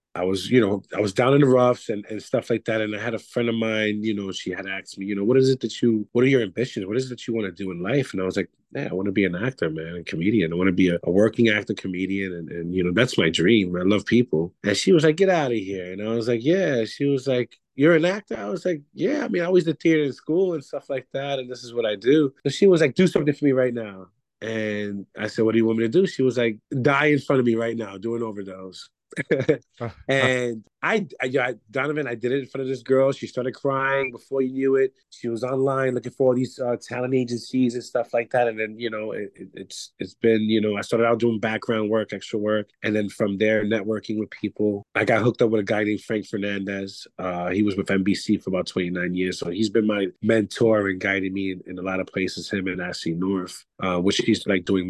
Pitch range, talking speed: 100-130 Hz, 280 wpm